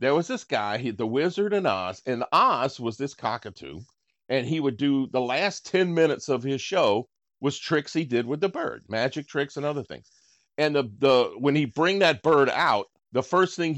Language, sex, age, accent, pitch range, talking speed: English, male, 50-69, American, 110-150 Hz, 215 wpm